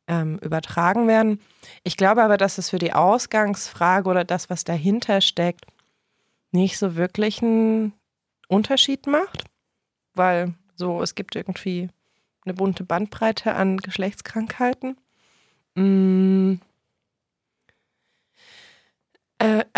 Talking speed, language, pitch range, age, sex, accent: 95 wpm, German, 185-225 Hz, 20-39, female, German